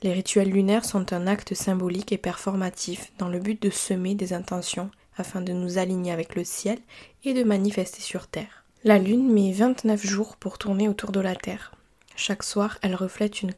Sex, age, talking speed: female, 20-39, 195 wpm